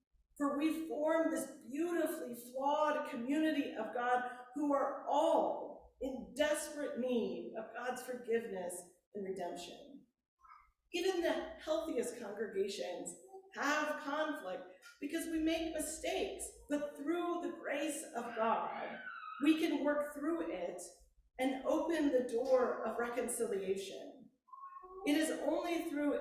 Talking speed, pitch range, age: 115 wpm, 230-305 Hz, 40-59